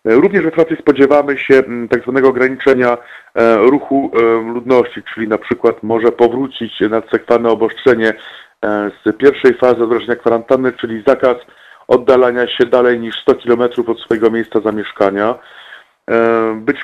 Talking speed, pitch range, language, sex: 125 wpm, 115-135 Hz, Polish, male